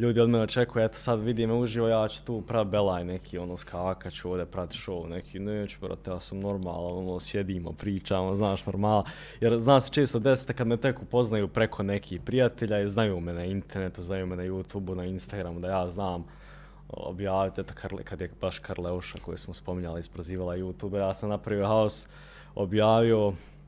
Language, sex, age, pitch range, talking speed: Croatian, male, 20-39, 95-115 Hz, 195 wpm